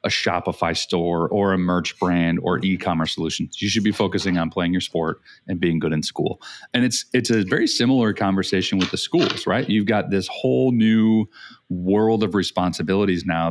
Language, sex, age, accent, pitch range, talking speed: English, male, 30-49, American, 85-100 Hz, 190 wpm